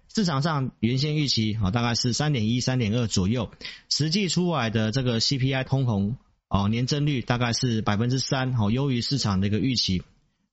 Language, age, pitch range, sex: Chinese, 30-49, 110-140 Hz, male